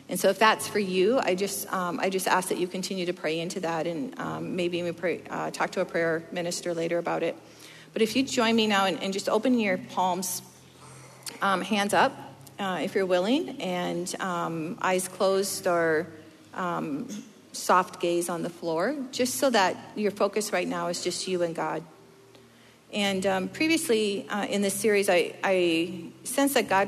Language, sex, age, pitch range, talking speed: English, female, 40-59, 175-215 Hz, 195 wpm